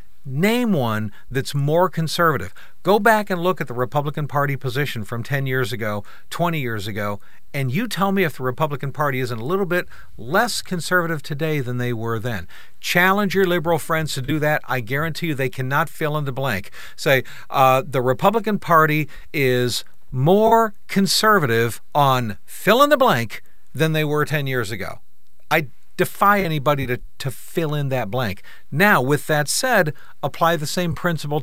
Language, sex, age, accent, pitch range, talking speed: English, male, 50-69, American, 130-180 Hz, 175 wpm